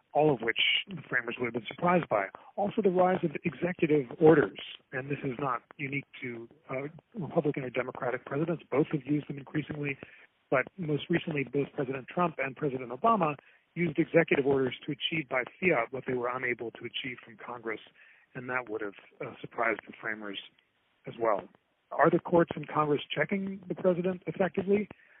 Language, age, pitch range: English, 40-59, 130-165 Hz